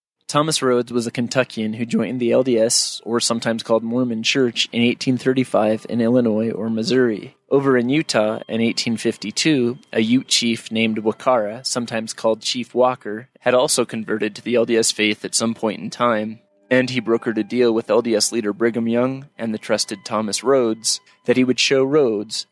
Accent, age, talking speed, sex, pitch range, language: American, 20-39, 175 wpm, male, 115-125 Hz, English